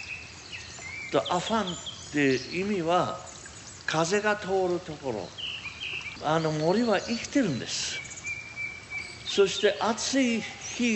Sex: male